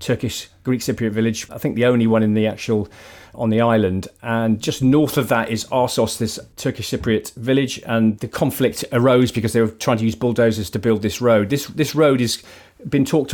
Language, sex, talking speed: English, male, 210 wpm